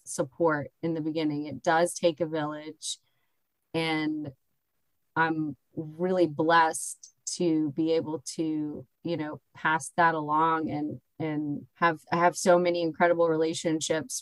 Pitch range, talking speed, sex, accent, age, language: 160-185 Hz, 130 wpm, female, American, 30-49, English